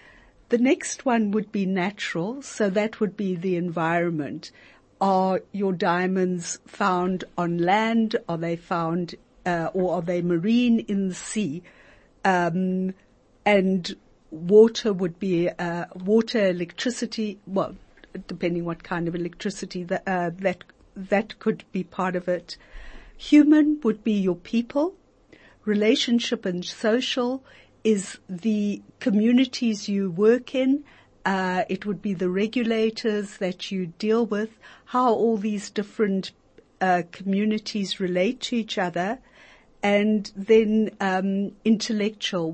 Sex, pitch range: female, 180-220 Hz